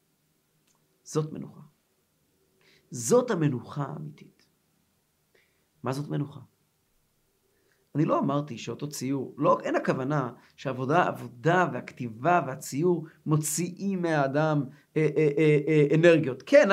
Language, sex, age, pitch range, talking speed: Hebrew, male, 50-69, 140-180 Hz, 105 wpm